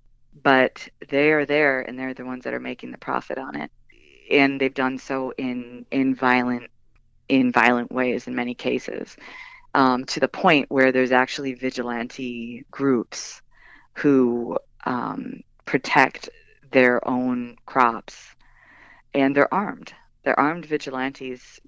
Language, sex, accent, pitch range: English, female, American, 125-150 Hz